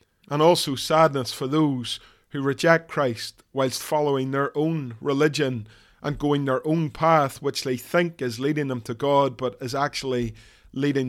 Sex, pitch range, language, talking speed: male, 120-150 Hz, English, 160 wpm